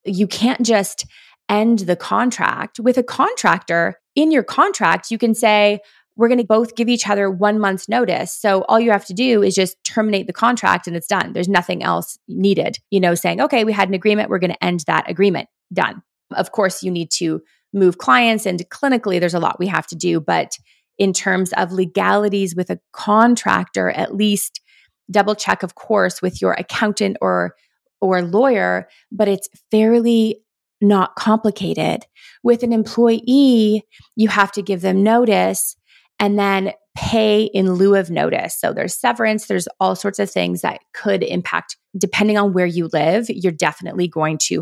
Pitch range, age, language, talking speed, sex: 180-220 Hz, 20-39, English, 180 wpm, female